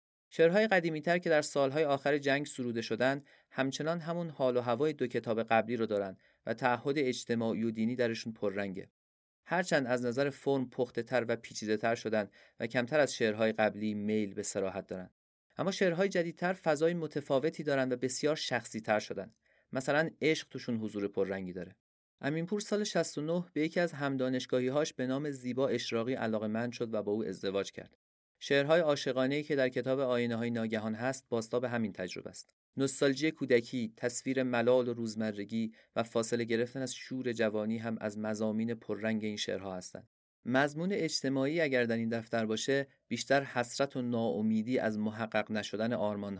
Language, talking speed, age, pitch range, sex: Persian, 165 wpm, 30-49, 110-140 Hz, male